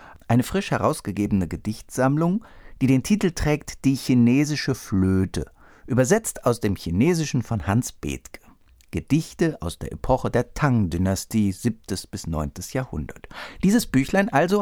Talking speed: 125 wpm